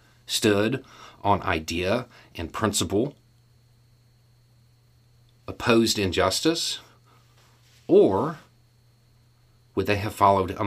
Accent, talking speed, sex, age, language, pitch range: American, 75 wpm, male, 40-59, English, 115-120 Hz